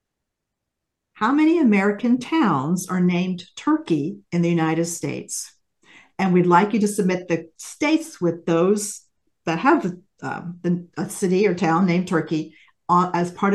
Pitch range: 170-215 Hz